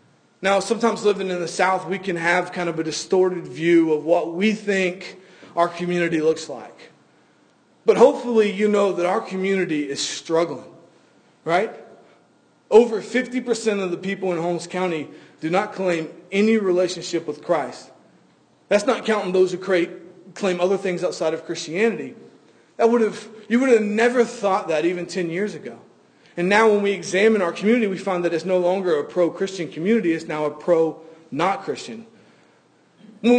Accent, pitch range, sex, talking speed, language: American, 170-210 Hz, male, 165 wpm, English